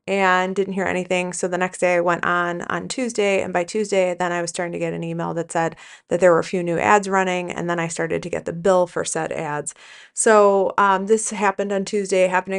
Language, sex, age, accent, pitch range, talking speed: English, female, 30-49, American, 170-195 Hz, 250 wpm